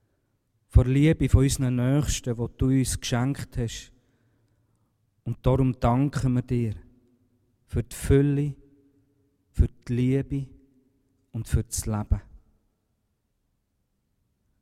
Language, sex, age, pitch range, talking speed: German, male, 40-59, 110-130 Hz, 105 wpm